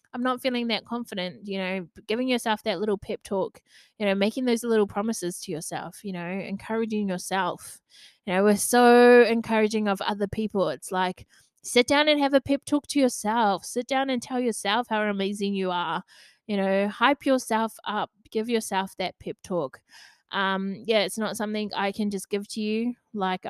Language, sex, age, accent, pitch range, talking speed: English, female, 20-39, Australian, 190-240 Hz, 190 wpm